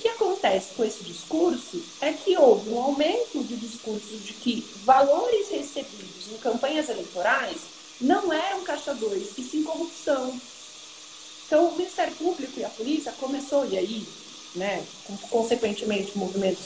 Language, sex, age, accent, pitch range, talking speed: Portuguese, female, 40-59, Brazilian, 240-345 Hz, 145 wpm